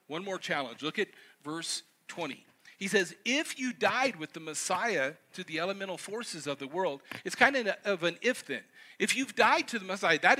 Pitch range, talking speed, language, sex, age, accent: 175-250 Hz, 200 wpm, English, male, 50-69, American